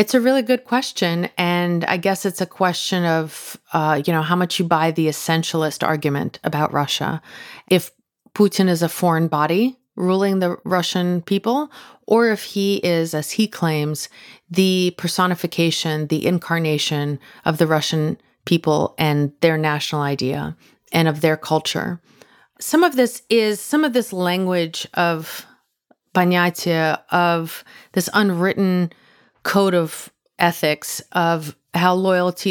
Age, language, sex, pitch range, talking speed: 30-49, English, female, 160-195 Hz, 140 wpm